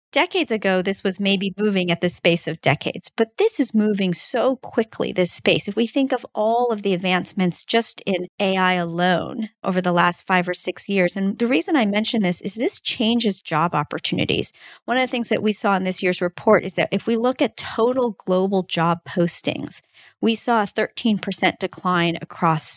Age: 40-59